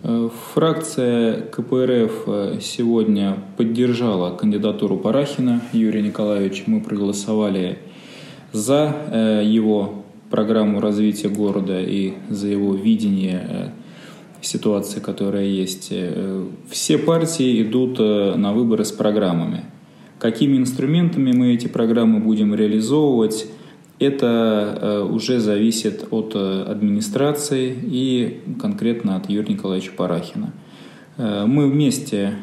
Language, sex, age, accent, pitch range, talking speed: Russian, male, 20-39, native, 105-135 Hz, 90 wpm